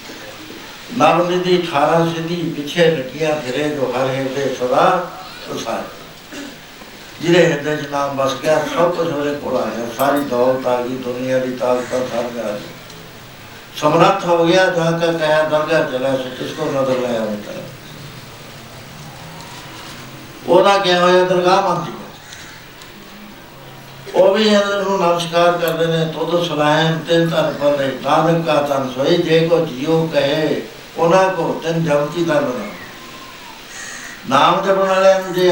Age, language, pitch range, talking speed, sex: 60-79, Punjabi, 130-170 Hz, 60 wpm, male